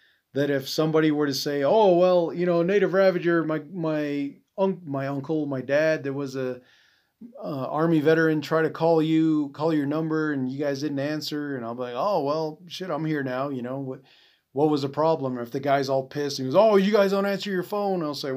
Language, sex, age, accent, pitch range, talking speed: English, male, 30-49, American, 130-155 Hz, 230 wpm